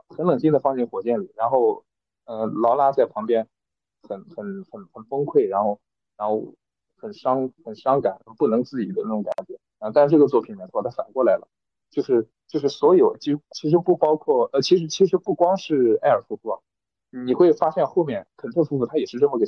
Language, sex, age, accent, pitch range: Chinese, male, 20-39, native, 125-190 Hz